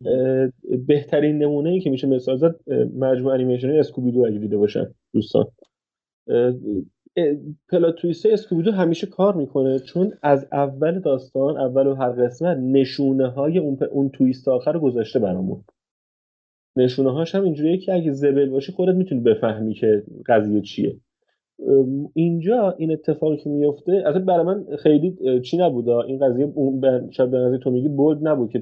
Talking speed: 150 wpm